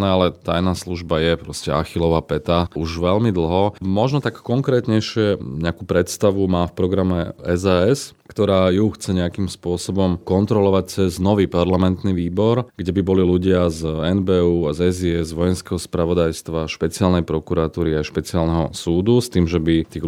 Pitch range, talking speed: 85-95 Hz, 145 wpm